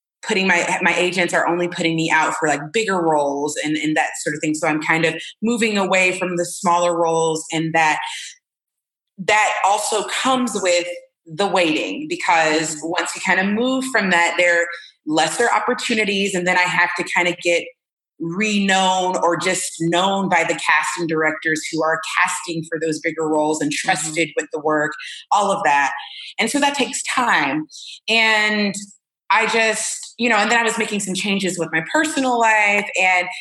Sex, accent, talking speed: female, American, 180 wpm